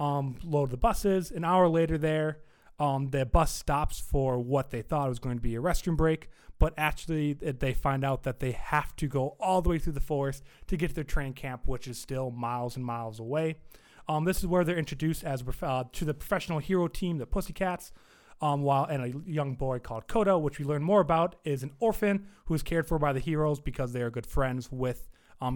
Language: English